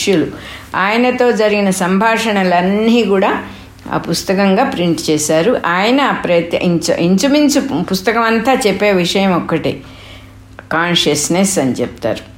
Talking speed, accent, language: 55 wpm, Indian, English